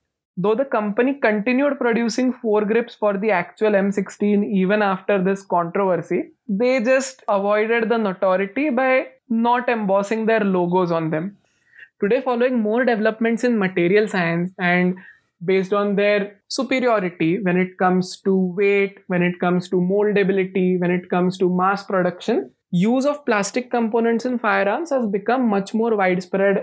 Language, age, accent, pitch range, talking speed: English, 20-39, Indian, 185-225 Hz, 145 wpm